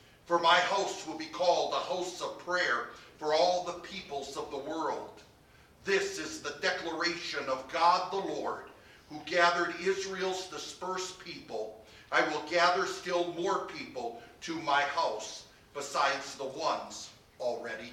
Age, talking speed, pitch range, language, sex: 50-69, 145 wpm, 155-190 Hz, English, male